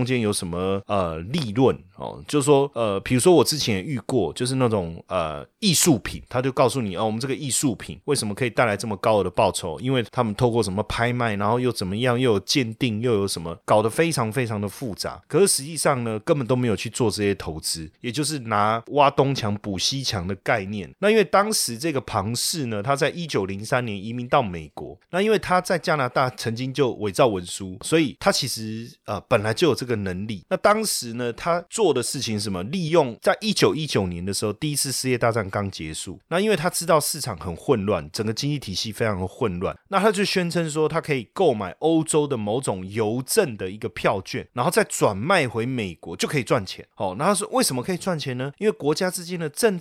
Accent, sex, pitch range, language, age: native, male, 105-165 Hz, Chinese, 30-49